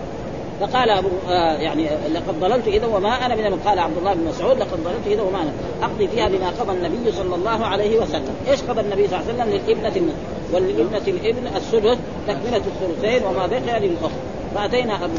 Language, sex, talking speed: Arabic, female, 180 wpm